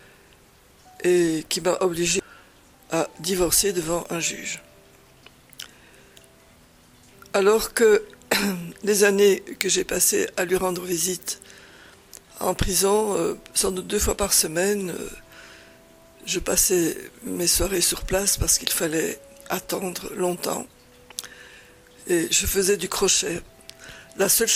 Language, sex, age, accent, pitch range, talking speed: French, female, 60-79, French, 175-225 Hz, 110 wpm